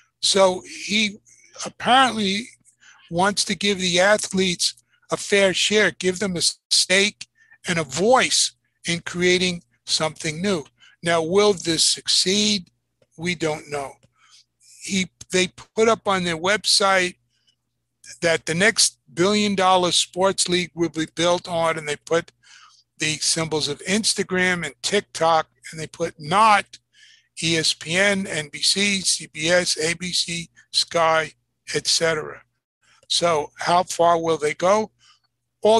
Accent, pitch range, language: American, 160-200 Hz, English